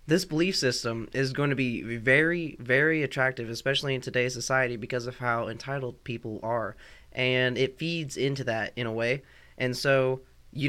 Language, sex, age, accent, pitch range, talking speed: English, male, 20-39, American, 120-140 Hz, 175 wpm